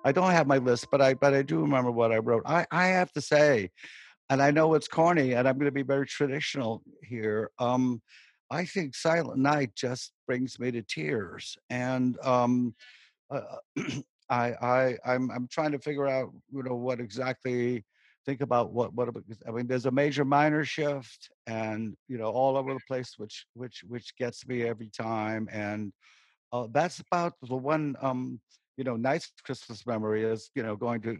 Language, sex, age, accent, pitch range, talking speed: English, male, 50-69, American, 110-130 Hz, 190 wpm